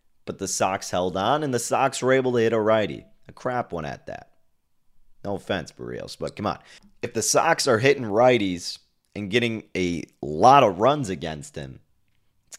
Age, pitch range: 30-49, 90-130 Hz